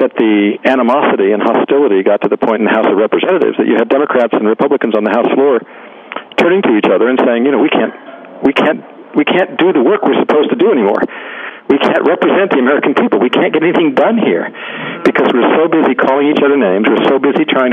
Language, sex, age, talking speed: English, male, 60-79, 235 wpm